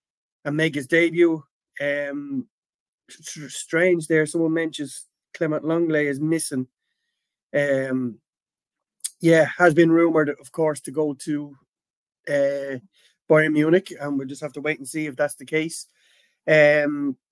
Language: English